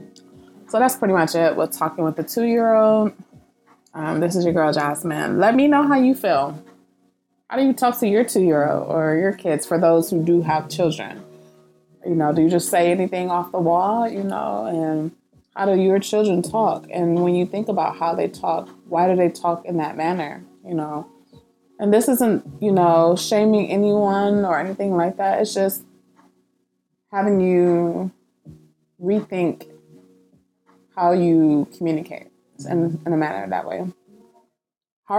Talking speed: 170 wpm